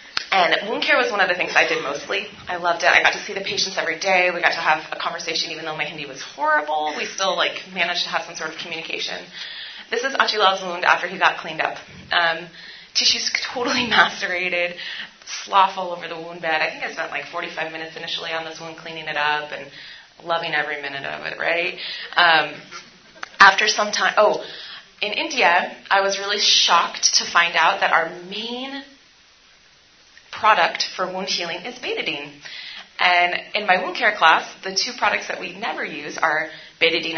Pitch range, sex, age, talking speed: 160-195 Hz, female, 30-49, 195 wpm